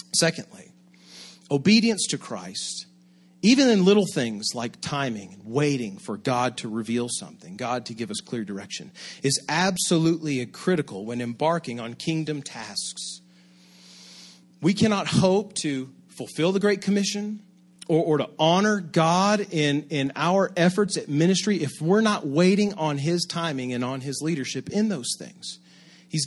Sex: male